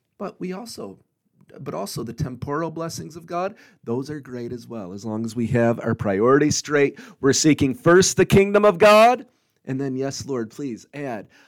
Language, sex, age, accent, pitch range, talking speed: English, male, 40-59, American, 115-175 Hz, 190 wpm